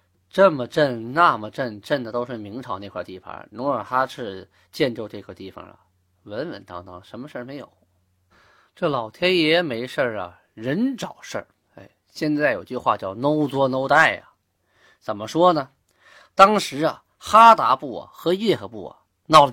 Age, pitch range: 20-39, 105-175 Hz